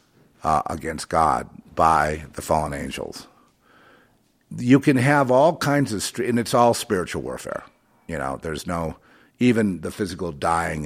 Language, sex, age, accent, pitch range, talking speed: English, male, 50-69, American, 80-105 Hz, 145 wpm